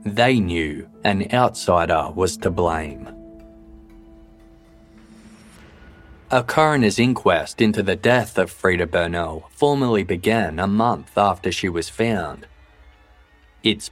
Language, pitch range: English, 85-110 Hz